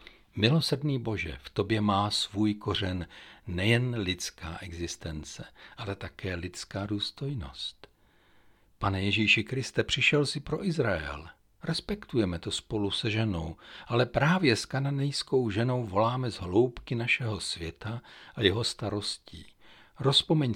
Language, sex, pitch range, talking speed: Czech, male, 95-130 Hz, 115 wpm